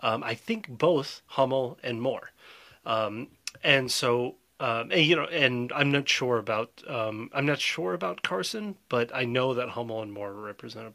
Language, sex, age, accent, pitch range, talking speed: English, male, 30-49, American, 115-160 Hz, 185 wpm